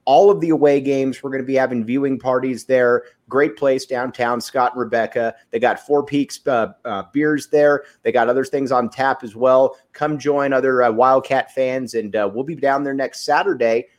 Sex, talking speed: male, 210 wpm